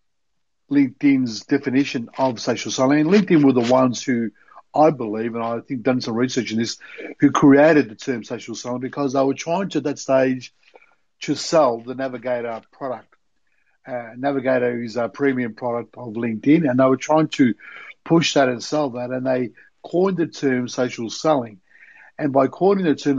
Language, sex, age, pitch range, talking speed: English, male, 60-79, 125-145 Hz, 180 wpm